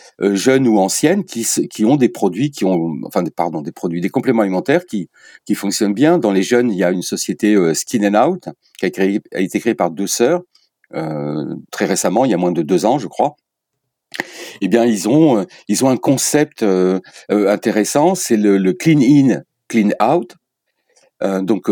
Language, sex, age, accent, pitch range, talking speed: French, male, 60-79, French, 95-120 Hz, 200 wpm